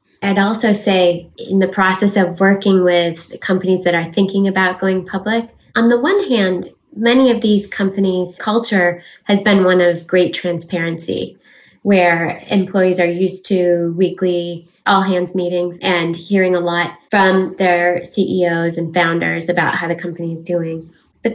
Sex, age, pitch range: female, 20-39, 175-200 Hz